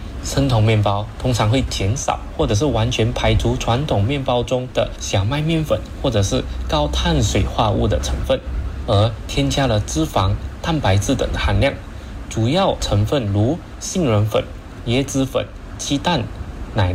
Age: 20-39